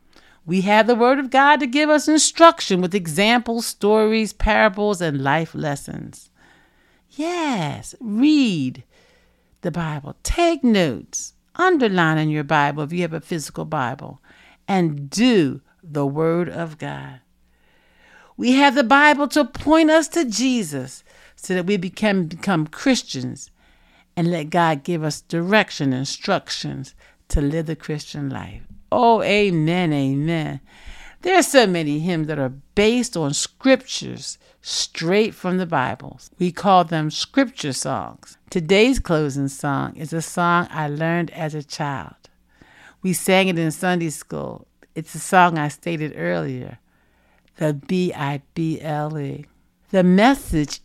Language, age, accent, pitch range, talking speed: English, 60-79, American, 150-215 Hz, 135 wpm